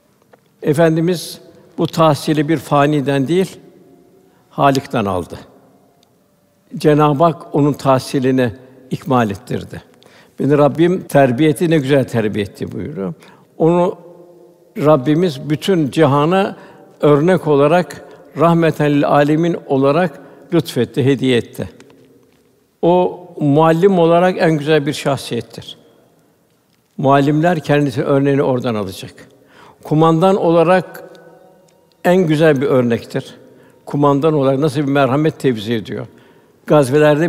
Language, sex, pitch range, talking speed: Turkish, male, 140-170 Hz, 95 wpm